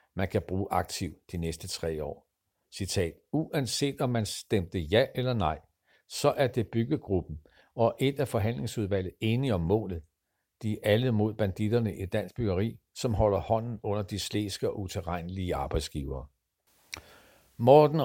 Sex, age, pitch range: male, 60-79, 95-120 Hz